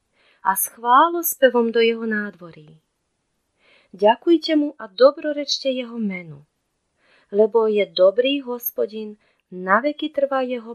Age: 30-49